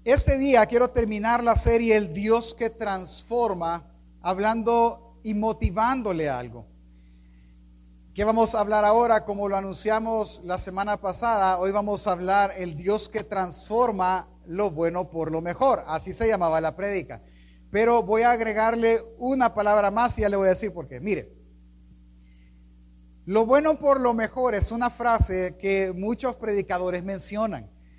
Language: Spanish